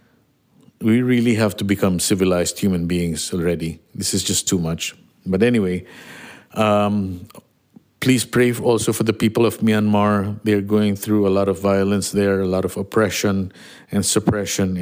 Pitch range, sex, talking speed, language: 95-110 Hz, male, 160 wpm, English